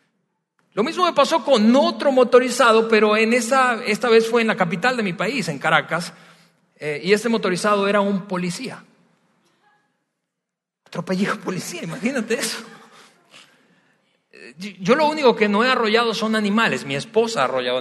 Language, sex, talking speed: Spanish, male, 150 wpm